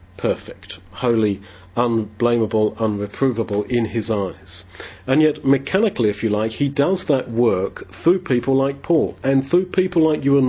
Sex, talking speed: male, 155 wpm